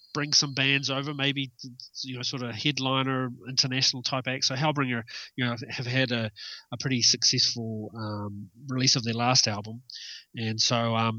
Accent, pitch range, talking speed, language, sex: Australian, 115-130 Hz, 175 wpm, English, male